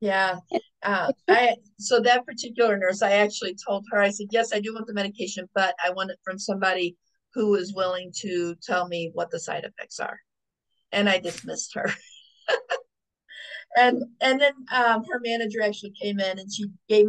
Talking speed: 185 wpm